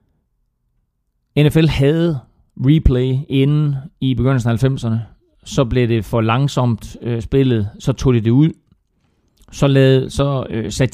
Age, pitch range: 40-59, 100-130 Hz